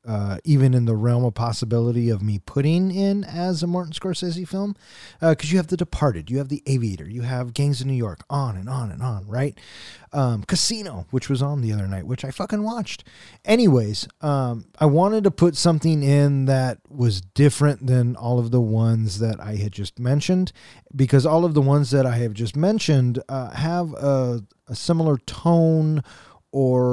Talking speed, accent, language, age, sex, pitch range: 195 wpm, American, English, 30-49, male, 115-145 Hz